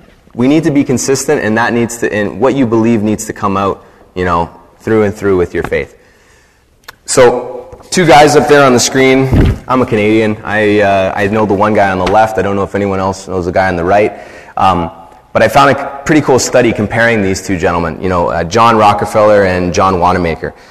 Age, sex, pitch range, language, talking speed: 20-39, male, 95-120 Hz, English, 225 wpm